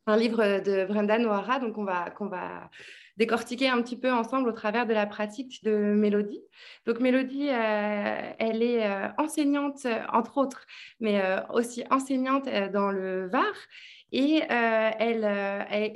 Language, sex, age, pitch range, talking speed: French, female, 20-39, 205-250 Hz, 150 wpm